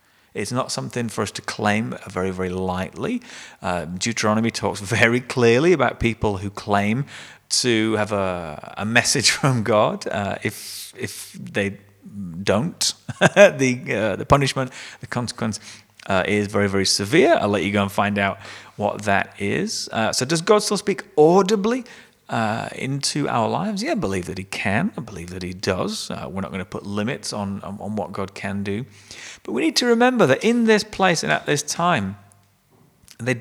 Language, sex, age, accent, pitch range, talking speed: English, male, 30-49, British, 100-135 Hz, 180 wpm